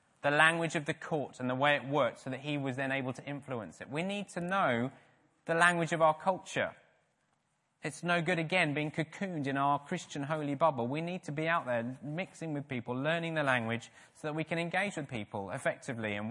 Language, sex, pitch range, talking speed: English, male, 125-170 Hz, 220 wpm